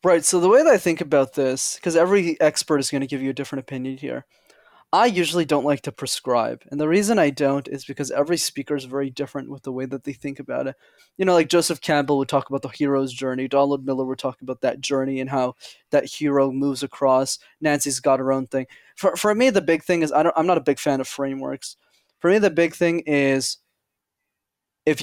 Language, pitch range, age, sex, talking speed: English, 135-160 Hz, 20-39, male, 235 wpm